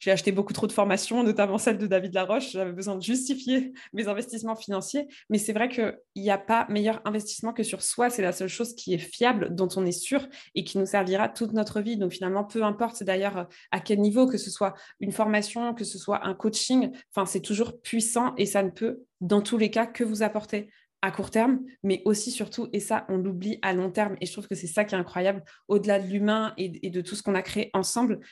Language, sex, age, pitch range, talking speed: French, female, 20-39, 195-235 Hz, 240 wpm